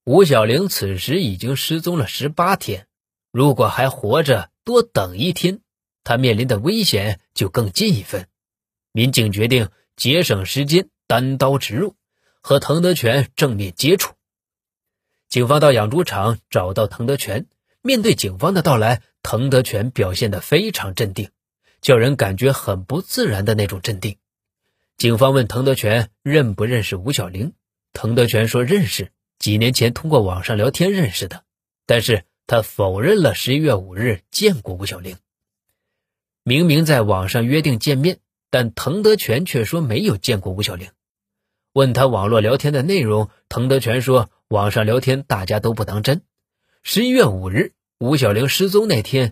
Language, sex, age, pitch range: Chinese, male, 20-39, 105-145 Hz